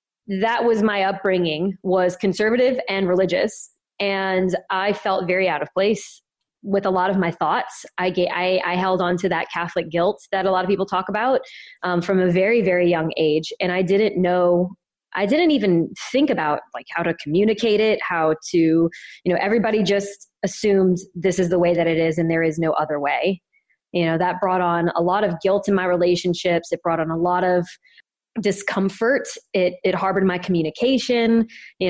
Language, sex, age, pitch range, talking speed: English, female, 20-39, 175-205 Hz, 195 wpm